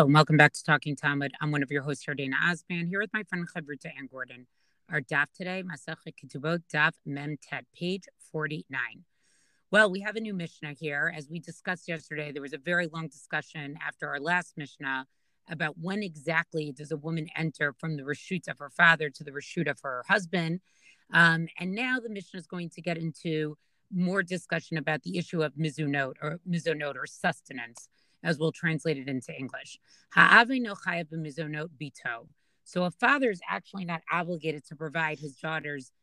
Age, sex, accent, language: 30-49, female, American, English